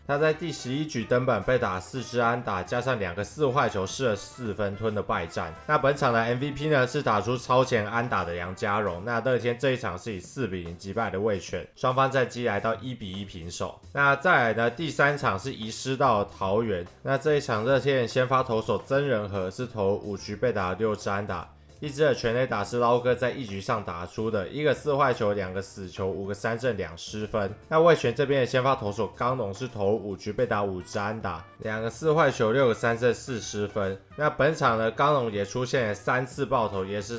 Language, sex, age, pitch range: Chinese, male, 20-39, 100-130 Hz